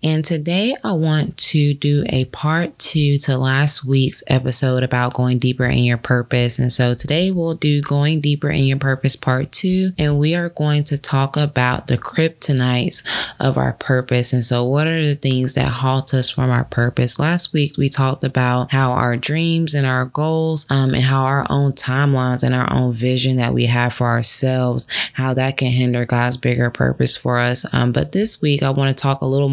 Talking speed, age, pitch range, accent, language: 205 wpm, 20-39, 125-145 Hz, American, English